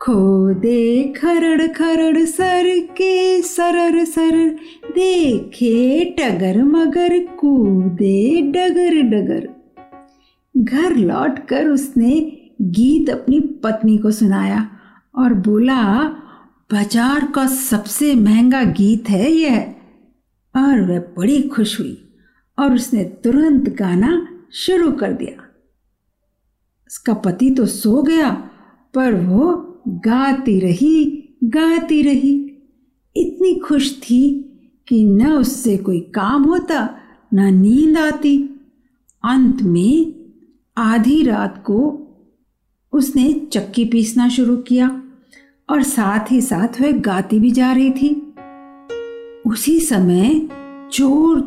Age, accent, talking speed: 50-69, native, 105 wpm